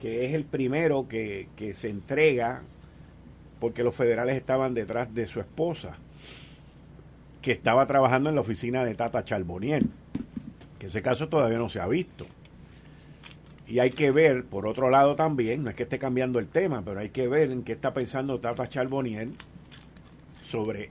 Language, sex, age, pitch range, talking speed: Spanish, male, 50-69, 110-135 Hz, 170 wpm